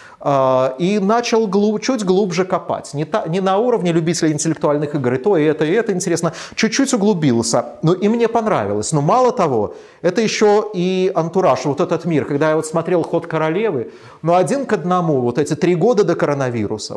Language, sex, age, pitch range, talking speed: Russian, male, 30-49, 145-185 Hz, 175 wpm